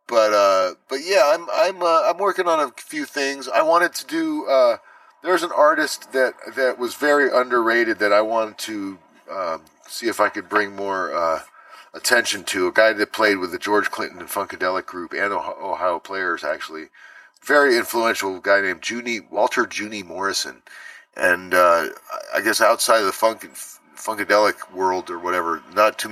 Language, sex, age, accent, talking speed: English, male, 40-59, American, 180 wpm